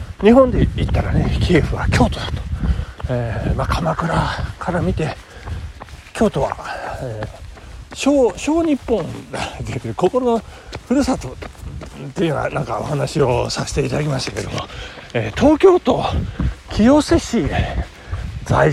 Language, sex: Japanese, male